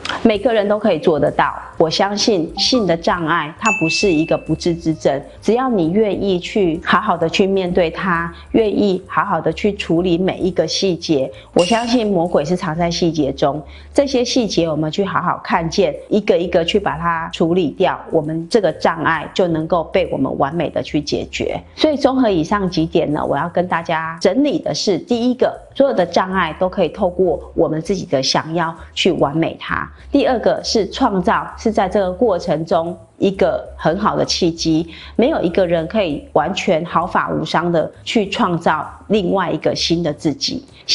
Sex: female